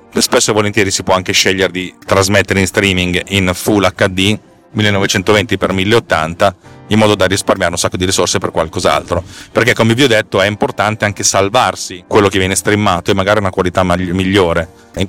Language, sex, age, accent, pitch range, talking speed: Italian, male, 30-49, native, 90-110 Hz, 175 wpm